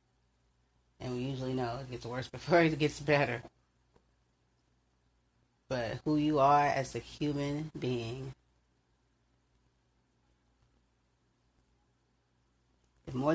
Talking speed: 90 wpm